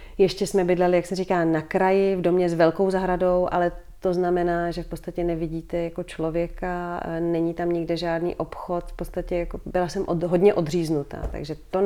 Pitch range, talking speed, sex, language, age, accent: 170-185 Hz, 185 wpm, female, Czech, 30-49, native